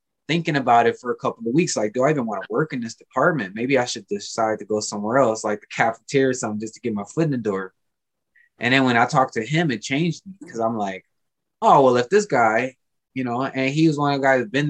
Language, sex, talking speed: English, male, 280 wpm